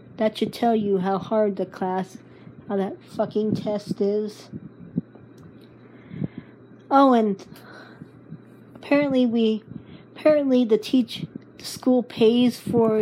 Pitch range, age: 200-240 Hz, 40-59